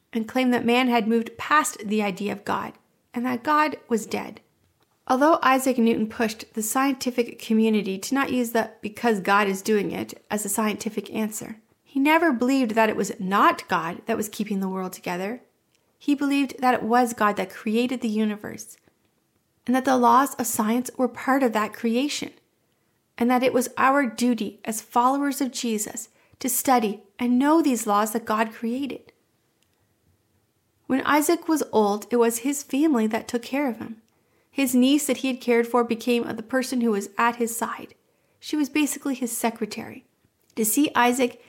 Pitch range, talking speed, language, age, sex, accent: 220-260 Hz, 180 wpm, English, 30-49, female, American